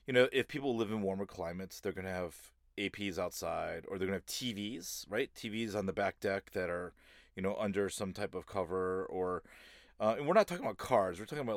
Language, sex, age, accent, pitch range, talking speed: English, male, 30-49, American, 95-120 Hz, 240 wpm